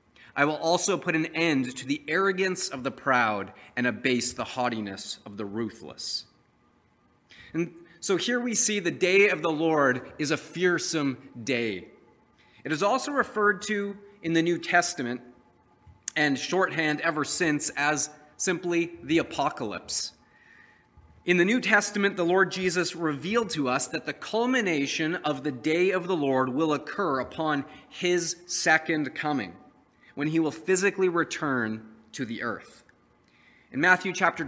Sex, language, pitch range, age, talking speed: male, English, 135-180 Hz, 30-49, 150 wpm